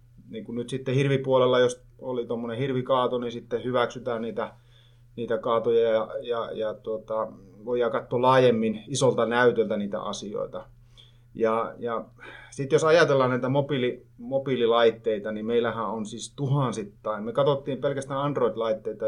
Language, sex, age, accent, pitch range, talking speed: Finnish, male, 30-49, native, 115-140 Hz, 130 wpm